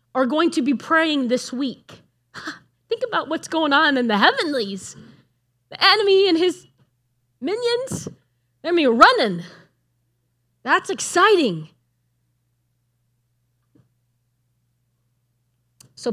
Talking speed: 95 wpm